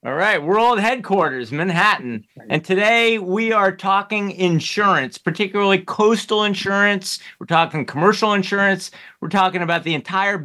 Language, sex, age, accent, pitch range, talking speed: English, male, 50-69, American, 155-195 Hz, 130 wpm